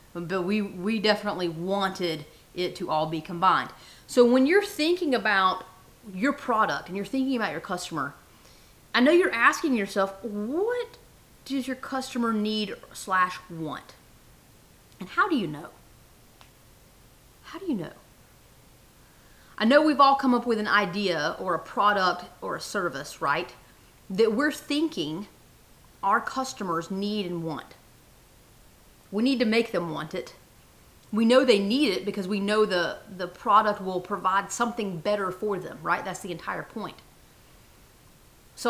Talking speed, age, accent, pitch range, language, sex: 150 wpm, 30-49, American, 185-245 Hz, English, female